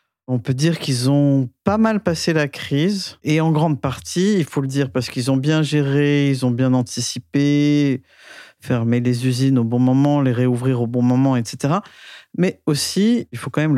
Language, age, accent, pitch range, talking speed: French, 50-69, French, 130-155 Hz, 195 wpm